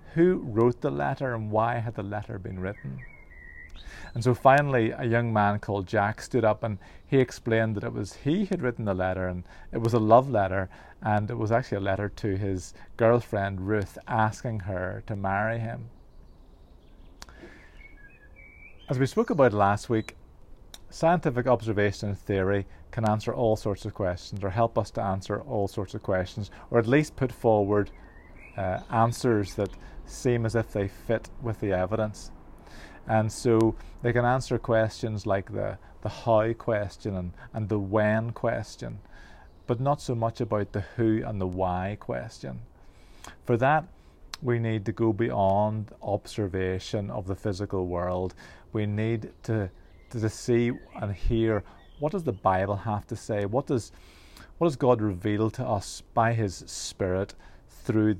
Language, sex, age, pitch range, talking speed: English, male, 30-49, 95-115 Hz, 165 wpm